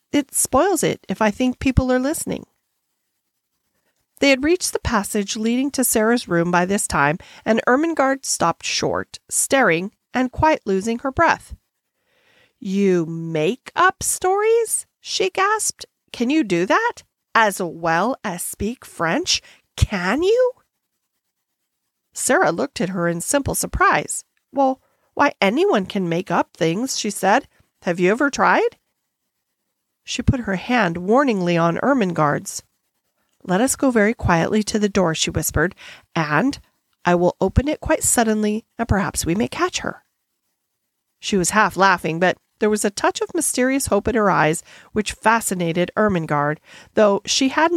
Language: English